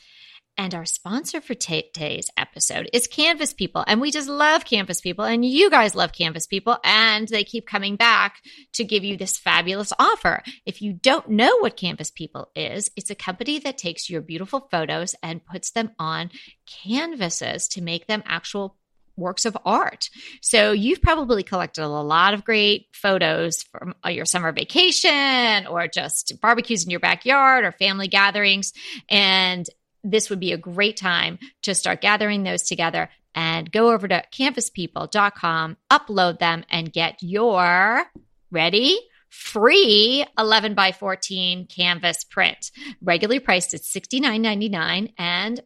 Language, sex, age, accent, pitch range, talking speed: English, female, 30-49, American, 180-245 Hz, 150 wpm